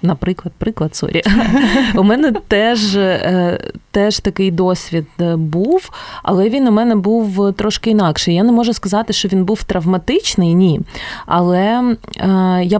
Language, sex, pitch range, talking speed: Ukrainian, female, 175-225 Hz, 130 wpm